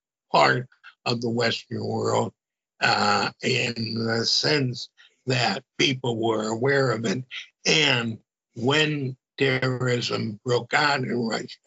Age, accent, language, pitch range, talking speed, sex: 60-79, American, English, 115-135 Hz, 115 wpm, male